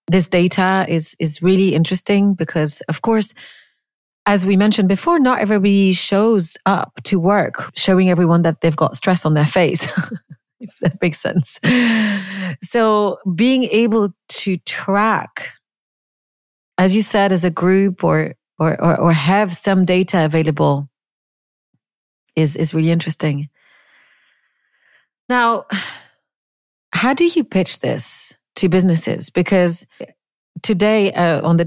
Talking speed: 125 wpm